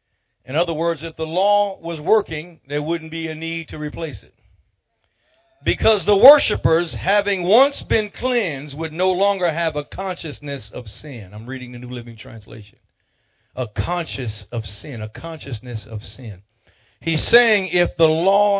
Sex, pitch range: male, 110-160 Hz